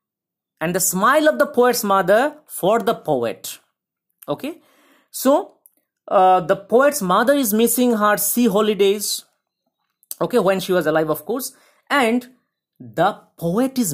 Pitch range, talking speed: 155-245 Hz, 140 wpm